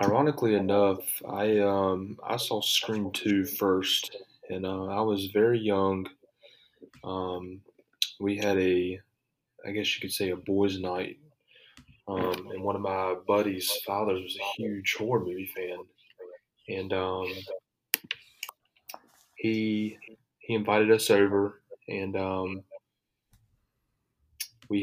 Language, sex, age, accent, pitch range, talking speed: English, male, 20-39, American, 95-110 Hz, 120 wpm